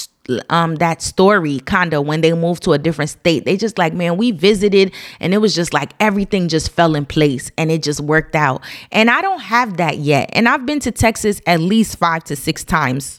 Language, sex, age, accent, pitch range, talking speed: English, female, 20-39, American, 150-200 Hz, 225 wpm